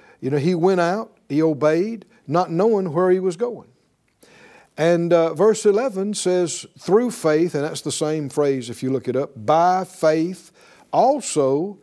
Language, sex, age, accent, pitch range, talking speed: English, male, 60-79, American, 140-195 Hz, 165 wpm